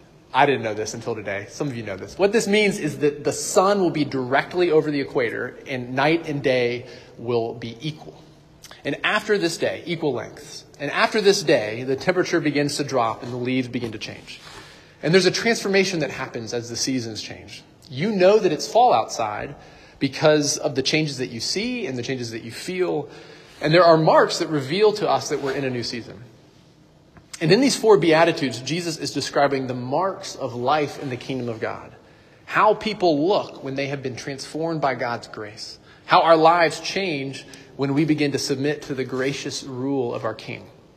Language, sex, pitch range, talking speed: English, male, 130-165 Hz, 205 wpm